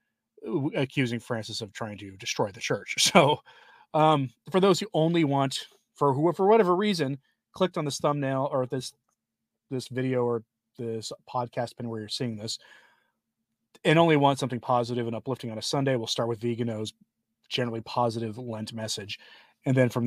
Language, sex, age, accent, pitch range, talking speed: English, male, 30-49, American, 115-145 Hz, 170 wpm